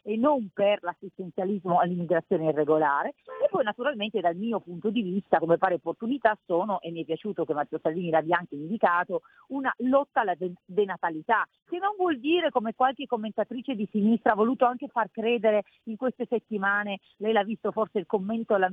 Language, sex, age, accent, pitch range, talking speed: Italian, female, 40-59, native, 185-245 Hz, 185 wpm